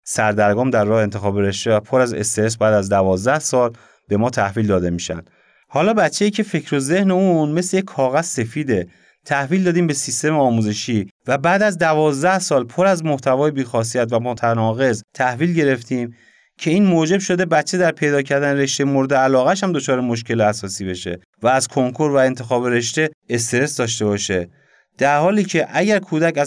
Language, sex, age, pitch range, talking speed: Persian, male, 30-49, 120-175 Hz, 175 wpm